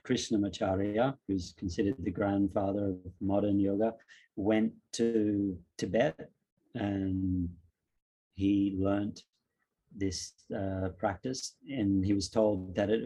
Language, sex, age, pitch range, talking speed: English, male, 30-49, 95-105 Hz, 105 wpm